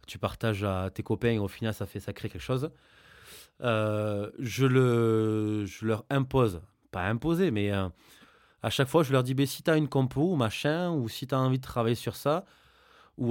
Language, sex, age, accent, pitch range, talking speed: French, male, 20-39, French, 110-150 Hz, 215 wpm